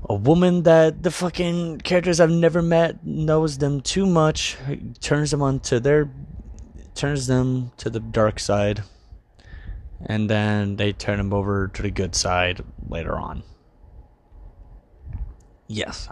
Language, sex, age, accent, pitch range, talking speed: English, male, 20-39, American, 95-135 Hz, 135 wpm